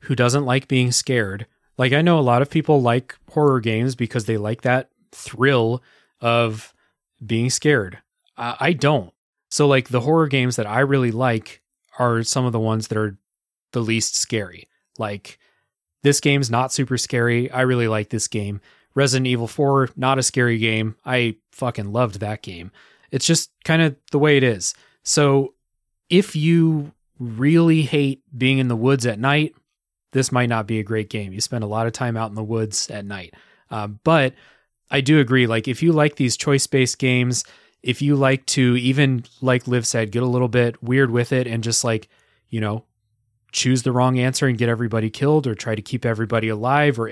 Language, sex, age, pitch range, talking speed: English, male, 30-49, 115-140 Hz, 195 wpm